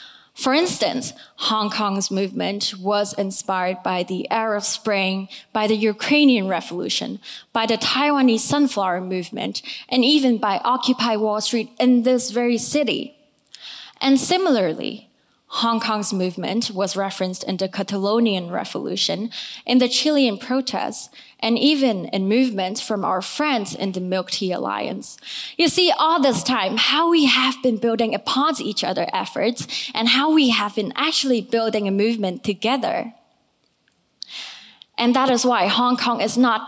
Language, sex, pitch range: English, female, 205-260 Hz